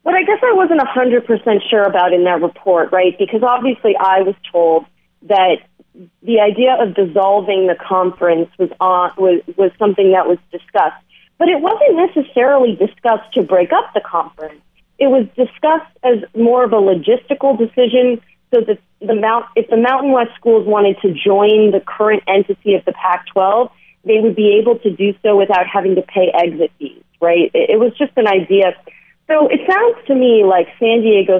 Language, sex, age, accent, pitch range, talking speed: English, female, 40-59, American, 185-250 Hz, 185 wpm